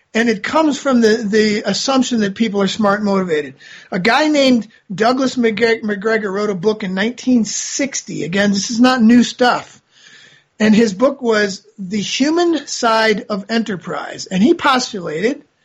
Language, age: English, 40-59